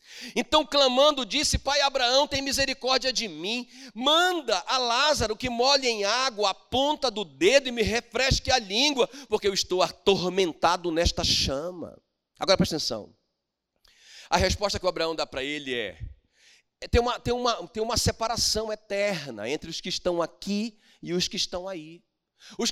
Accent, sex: Brazilian, male